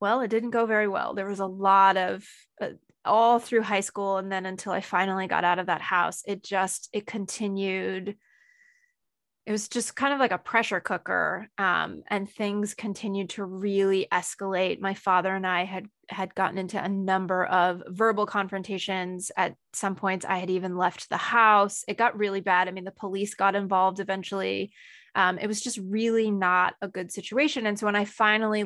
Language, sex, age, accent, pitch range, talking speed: English, female, 20-39, American, 190-215 Hz, 195 wpm